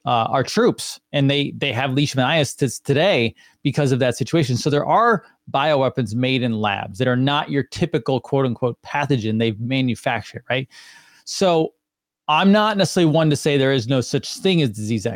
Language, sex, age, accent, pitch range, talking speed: English, male, 20-39, American, 120-150 Hz, 180 wpm